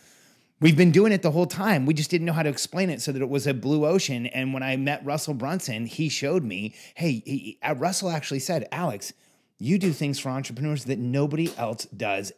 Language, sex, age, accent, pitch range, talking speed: English, male, 30-49, American, 125-155 Hz, 220 wpm